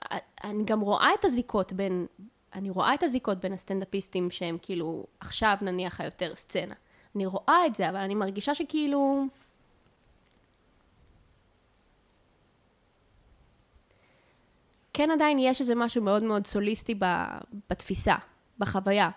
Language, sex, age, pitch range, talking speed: Hebrew, female, 20-39, 195-245 Hz, 115 wpm